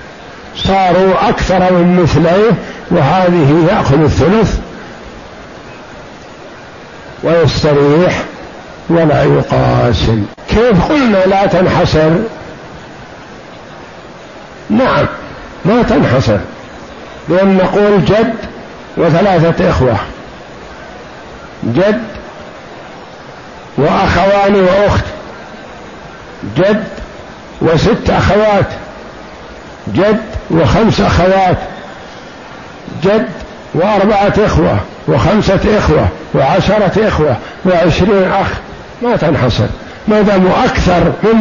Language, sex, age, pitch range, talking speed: Arabic, male, 60-79, 175-215 Hz, 65 wpm